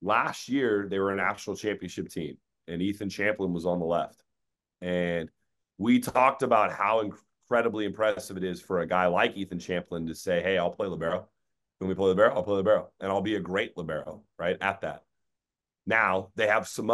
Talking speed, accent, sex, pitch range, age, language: 200 wpm, American, male, 95-120 Hz, 30-49, English